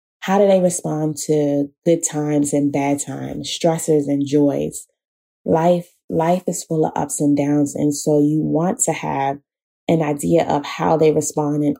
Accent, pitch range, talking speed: American, 145-160 Hz, 175 wpm